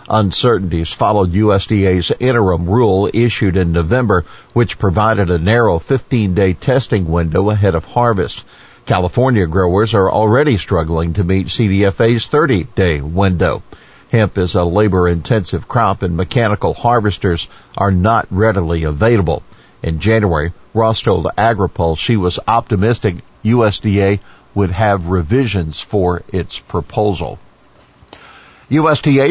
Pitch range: 95-120 Hz